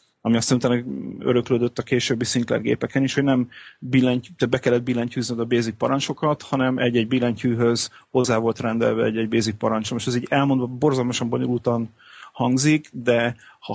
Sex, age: male, 30-49